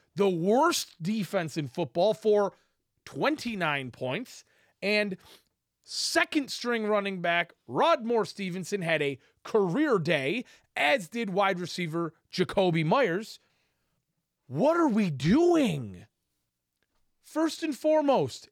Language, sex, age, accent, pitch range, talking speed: English, male, 30-49, American, 155-230 Hz, 105 wpm